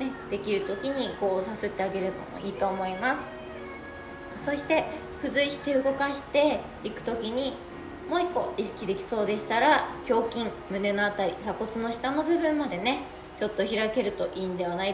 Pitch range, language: 195-260 Hz, Japanese